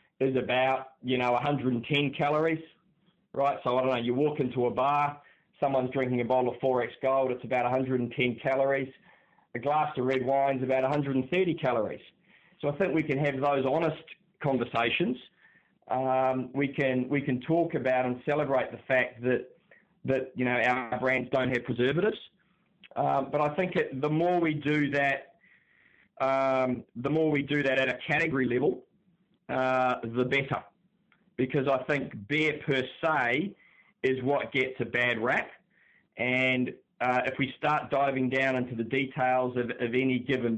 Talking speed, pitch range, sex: 165 wpm, 125-145 Hz, male